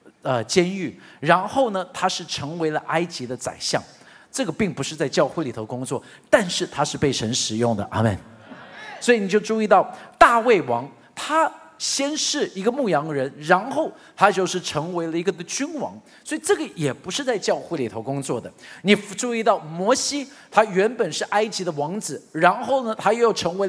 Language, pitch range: Chinese, 155-255 Hz